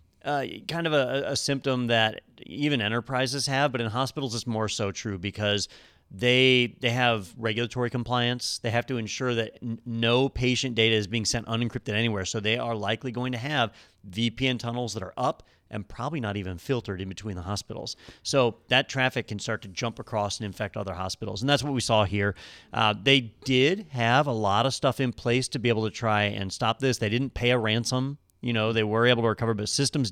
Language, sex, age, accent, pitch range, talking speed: English, male, 40-59, American, 105-130 Hz, 215 wpm